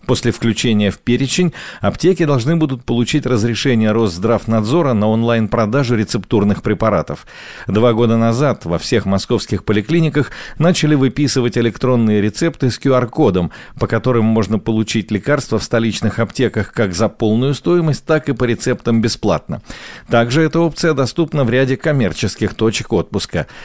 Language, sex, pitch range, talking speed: Russian, male, 105-140 Hz, 135 wpm